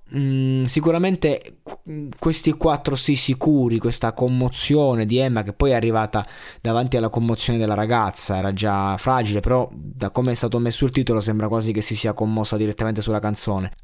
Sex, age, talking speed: male, 20-39, 170 wpm